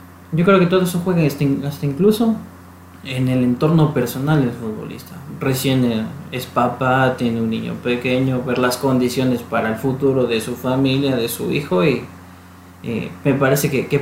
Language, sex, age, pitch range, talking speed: Spanish, male, 20-39, 115-140 Hz, 165 wpm